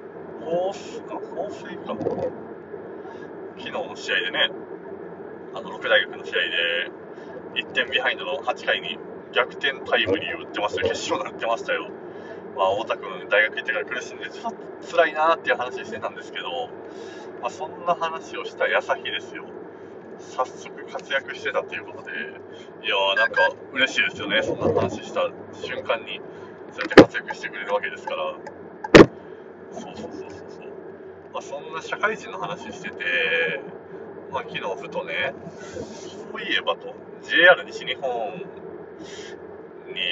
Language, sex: Japanese, male